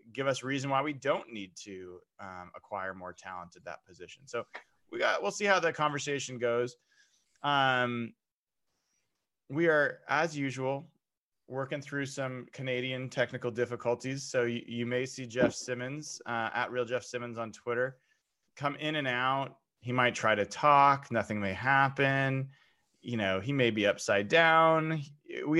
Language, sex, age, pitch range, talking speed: English, male, 20-39, 115-140 Hz, 160 wpm